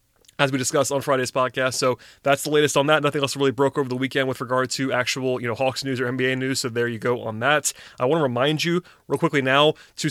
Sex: male